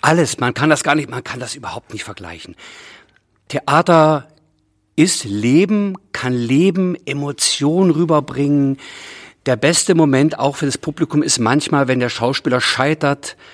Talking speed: 140 wpm